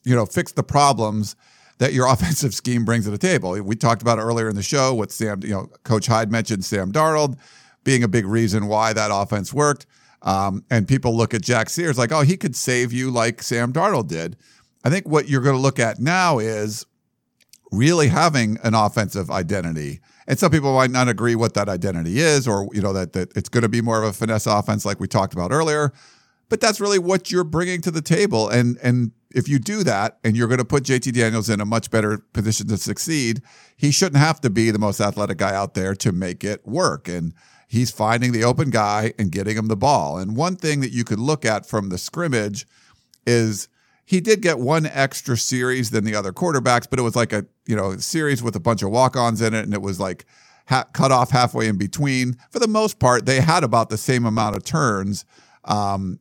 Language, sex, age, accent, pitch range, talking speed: English, male, 50-69, American, 105-140 Hz, 225 wpm